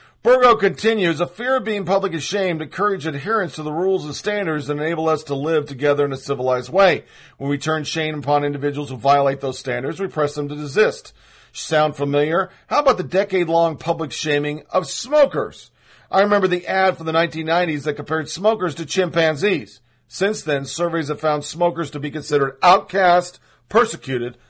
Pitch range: 145-195 Hz